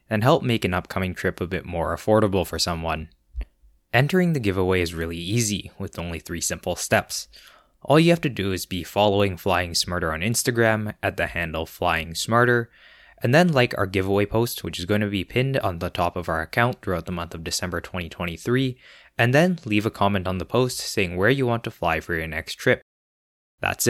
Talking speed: 210 wpm